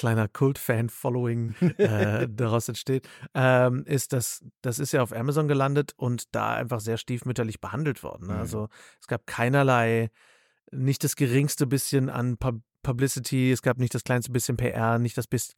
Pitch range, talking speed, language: 115-135 Hz, 160 wpm, German